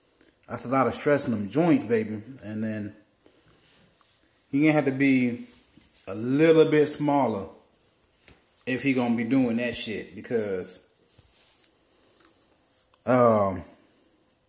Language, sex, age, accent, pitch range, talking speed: English, male, 30-49, American, 115-140 Hz, 120 wpm